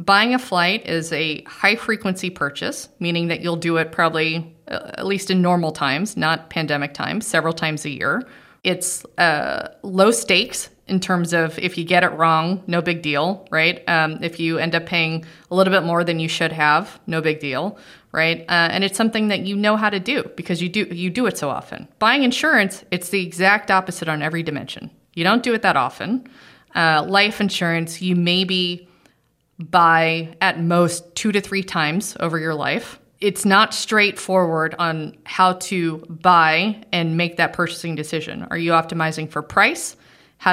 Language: English